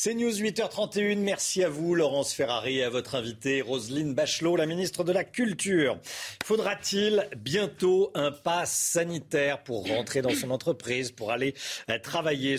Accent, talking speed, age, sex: French, 155 wpm, 40-59, male